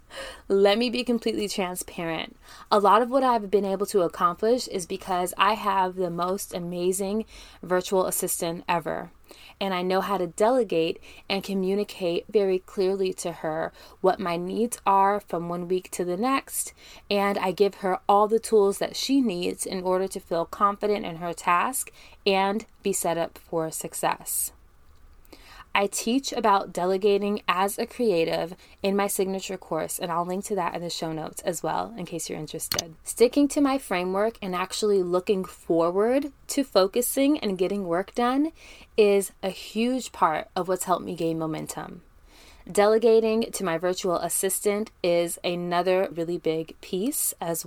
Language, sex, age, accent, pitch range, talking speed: English, female, 20-39, American, 175-215 Hz, 165 wpm